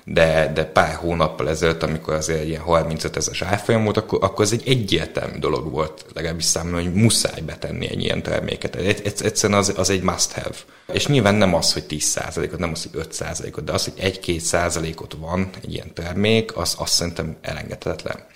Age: 30-49